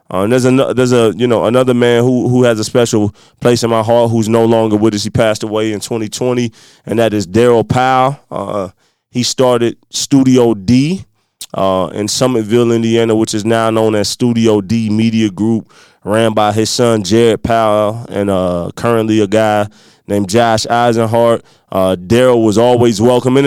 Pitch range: 110-135 Hz